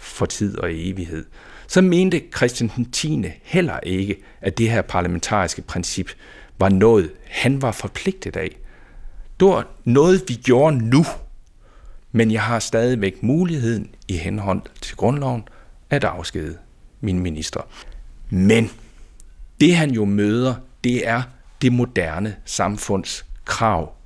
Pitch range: 95-135 Hz